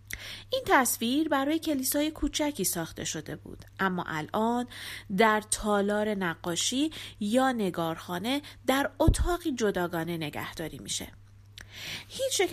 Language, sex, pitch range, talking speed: Persian, female, 155-260 Hz, 100 wpm